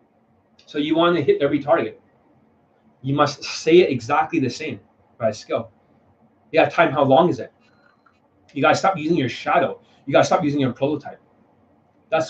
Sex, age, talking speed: male, 30-49, 185 wpm